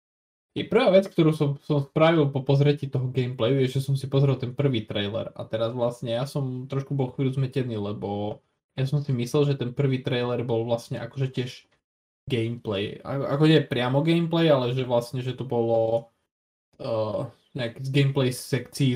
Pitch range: 120-145 Hz